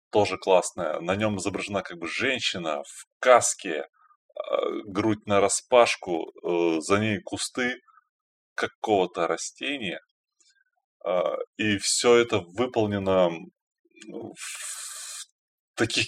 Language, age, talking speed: Russian, 20-39, 90 wpm